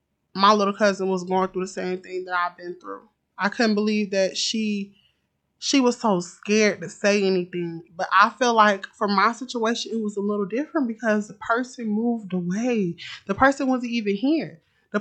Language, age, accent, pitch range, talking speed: English, 20-39, American, 185-240 Hz, 190 wpm